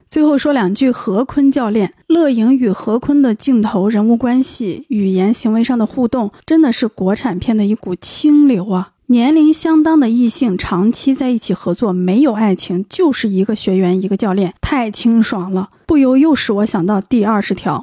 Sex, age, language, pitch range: female, 20-39, Chinese, 215-275 Hz